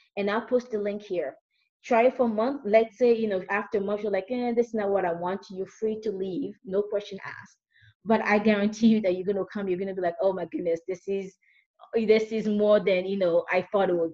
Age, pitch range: 20-39, 180-220 Hz